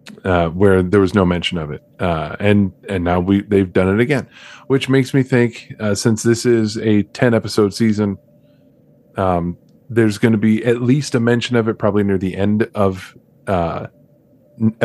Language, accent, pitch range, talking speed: English, American, 100-120 Hz, 180 wpm